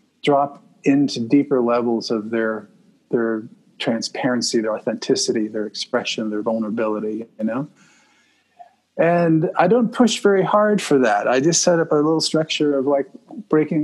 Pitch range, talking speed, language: 125-165 Hz, 145 wpm, English